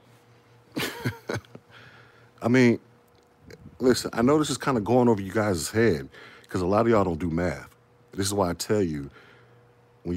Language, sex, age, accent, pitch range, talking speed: English, male, 50-69, American, 90-120 Hz, 170 wpm